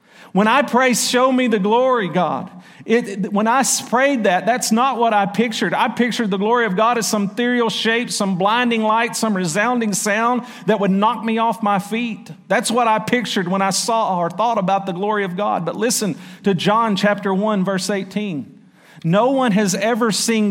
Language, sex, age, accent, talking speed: English, male, 50-69, American, 200 wpm